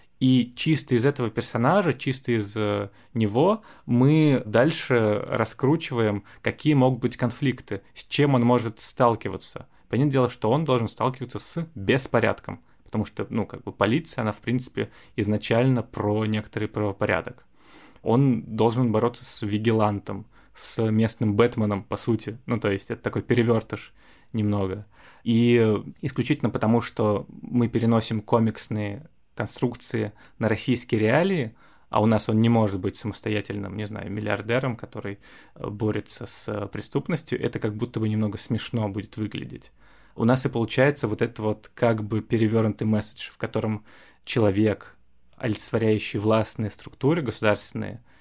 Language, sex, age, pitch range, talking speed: Russian, male, 20-39, 105-125 Hz, 135 wpm